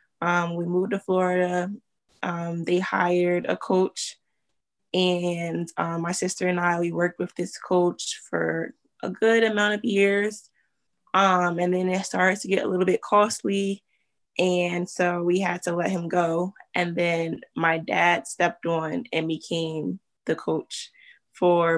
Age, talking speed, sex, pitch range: 20-39, 155 wpm, female, 165-185 Hz